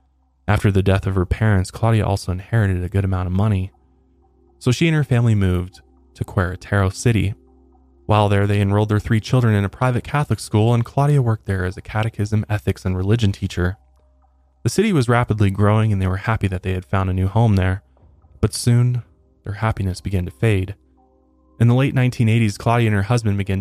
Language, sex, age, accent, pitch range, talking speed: English, male, 20-39, American, 90-110 Hz, 200 wpm